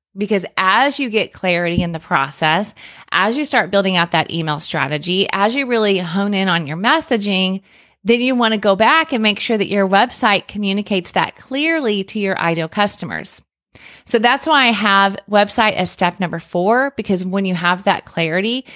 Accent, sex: American, female